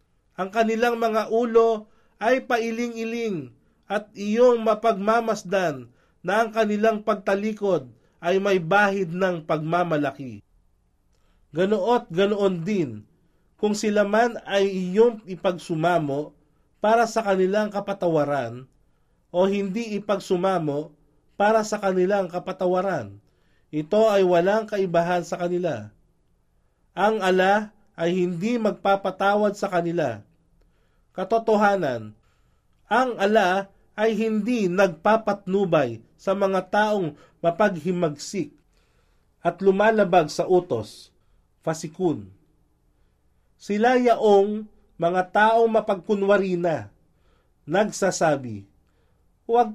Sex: male